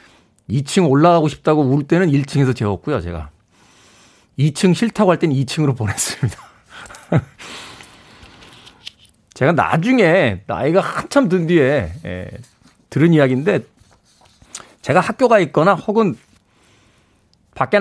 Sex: male